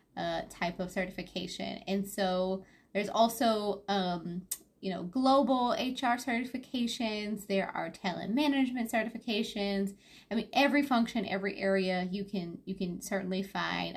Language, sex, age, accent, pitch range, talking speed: English, female, 20-39, American, 185-245 Hz, 135 wpm